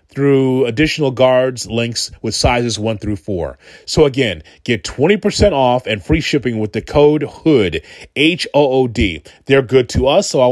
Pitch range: 110-155 Hz